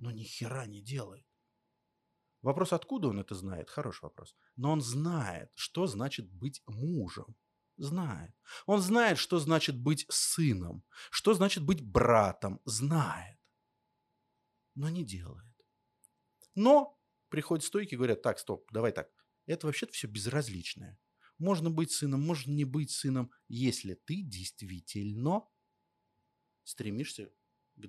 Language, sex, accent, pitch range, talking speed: Russian, male, native, 100-145 Hz, 125 wpm